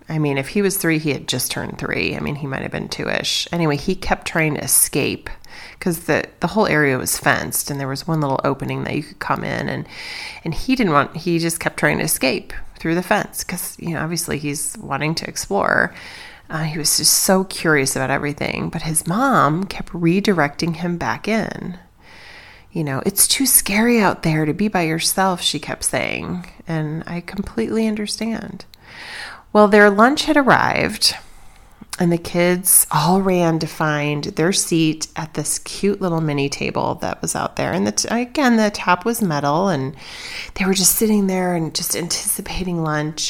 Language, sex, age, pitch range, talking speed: English, female, 30-49, 150-200 Hz, 195 wpm